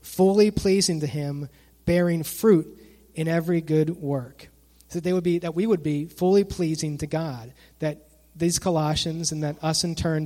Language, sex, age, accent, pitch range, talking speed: English, male, 30-49, American, 145-170 Hz, 160 wpm